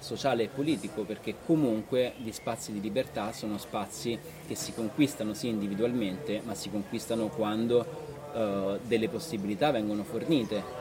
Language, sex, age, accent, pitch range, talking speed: Italian, male, 30-49, native, 110-140 Hz, 145 wpm